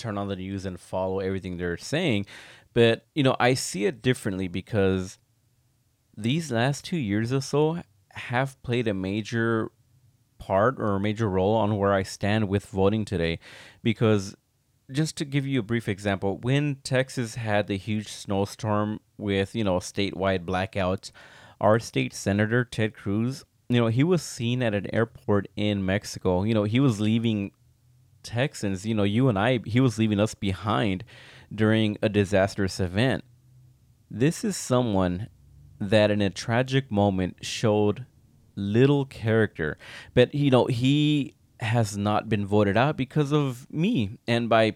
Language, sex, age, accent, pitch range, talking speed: English, male, 20-39, American, 100-125 Hz, 160 wpm